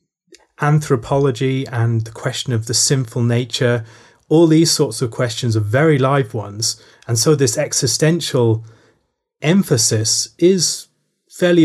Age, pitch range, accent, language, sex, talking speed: 30-49, 115-140 Hz, British, English, male, 125 wpm